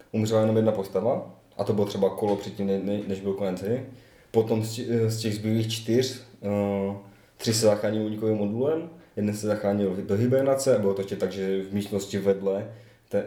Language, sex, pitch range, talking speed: Czech, male, 95-110 Hz, 165 wpm